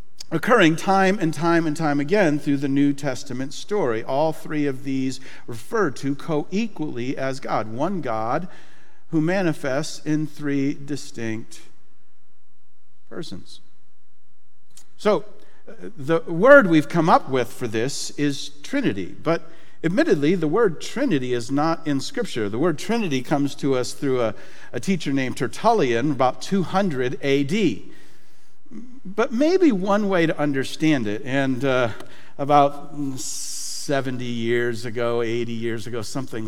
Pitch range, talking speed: 115-150 Hz, 135 wpm